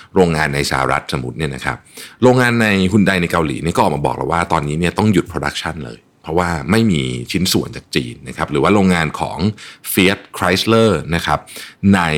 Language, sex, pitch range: Thai, male, 80-115 Hz